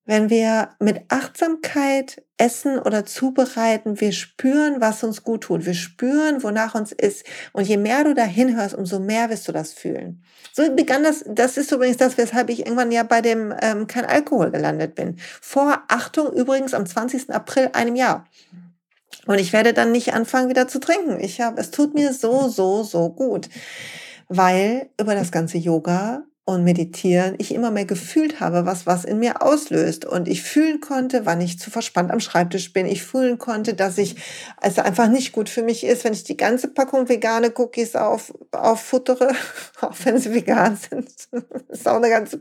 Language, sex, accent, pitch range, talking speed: German, female, German, 210-265 Hz, 190 wpm